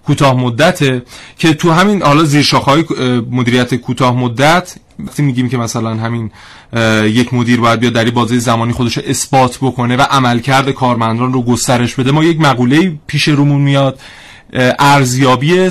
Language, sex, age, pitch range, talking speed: Persian, male, 30-49, 125-145 Hz, 150 wpm